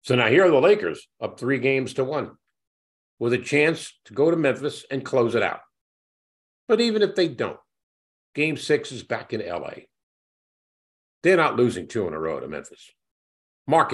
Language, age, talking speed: English, 50-69, 185 wpm